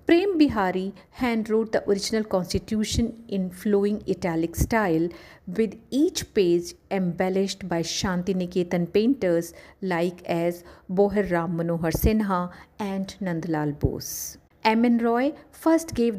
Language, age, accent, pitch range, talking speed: English, 50-69, Indian, 180-230 Hz, 115 wpm